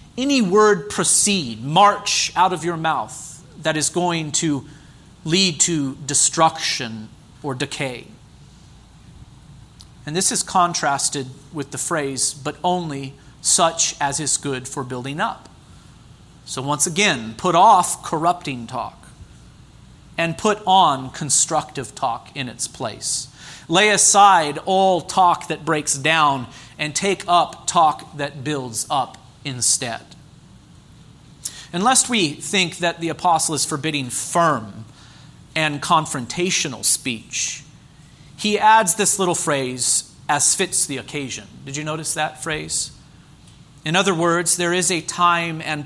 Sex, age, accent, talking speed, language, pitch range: male, 40-59, American, 125 wpm, English, 140-175 Hz